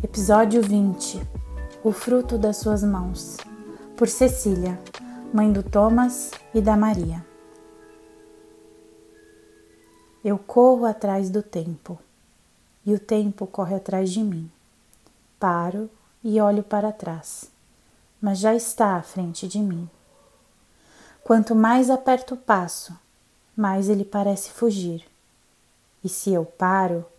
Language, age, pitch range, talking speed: Portuguese, 20-39, 175-220 Hz, 115 wpm